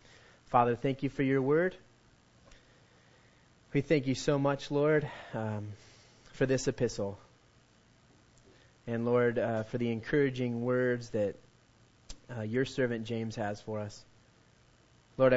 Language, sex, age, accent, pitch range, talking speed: English, male, 30-49, American, 115-130 Hz, 125 wpm